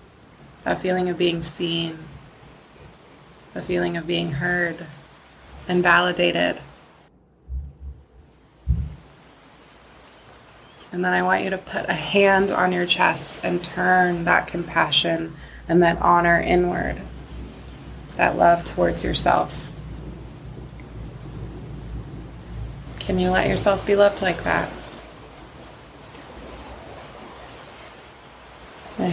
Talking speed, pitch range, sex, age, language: 95 wpm, 150-180 Hz, female, 20-39, English